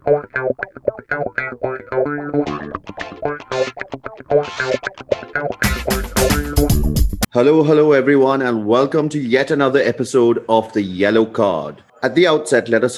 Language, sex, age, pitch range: English, male, 30-49, 115-150 Hz